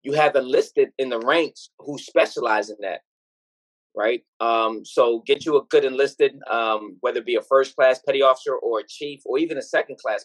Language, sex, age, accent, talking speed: English, male, 20-39, American, 195 wpm